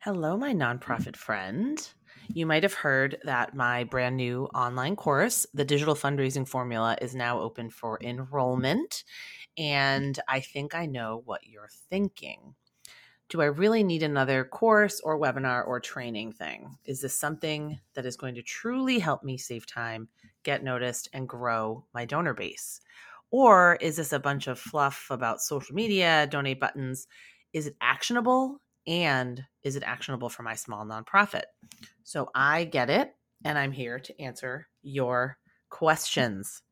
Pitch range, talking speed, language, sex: 125-165 Hz, 155 wpm, English, female